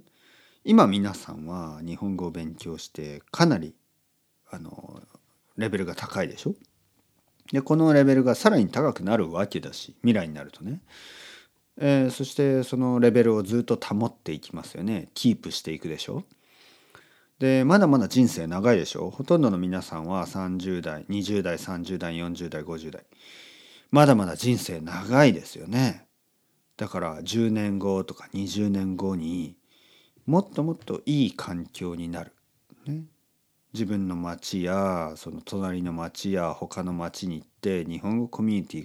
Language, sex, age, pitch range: Japanese, male, 40-59, 85-130 Hz